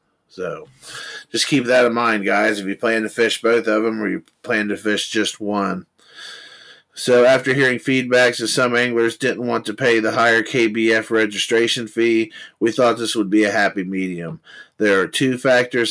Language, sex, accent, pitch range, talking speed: English, male, American, 105-125 Hz, 190 wpm